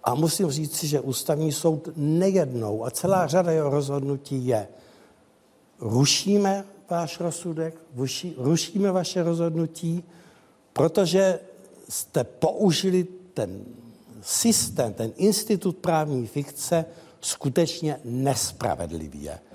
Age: 60-79